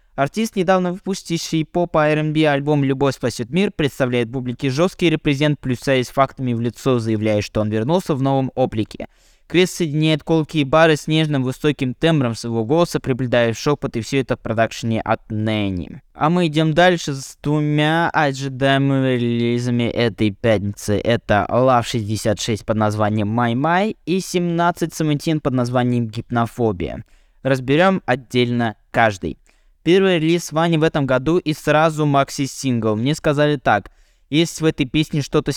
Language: Russian